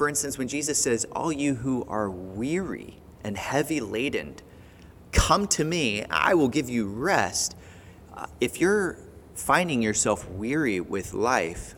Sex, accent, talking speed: male, American, 150 wpm